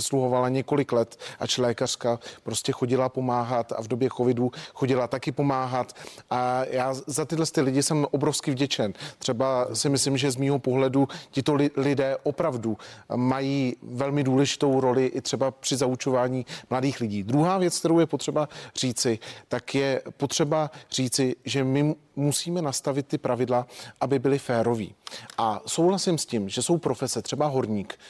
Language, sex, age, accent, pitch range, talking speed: Czech, male, 40-59, native, 125-150 Hz, 150 wpm